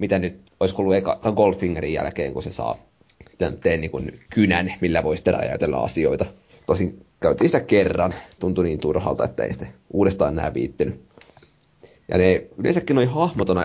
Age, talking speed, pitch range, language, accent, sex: 20-39, 165 wpm, 90-100 Hz, Finnish, native, male